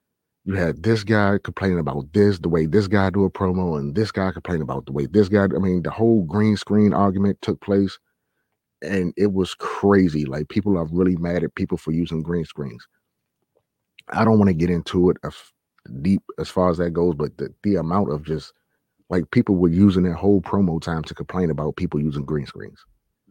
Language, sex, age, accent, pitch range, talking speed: English, male, 30-49, American, 80-100 Hz, 210 wpm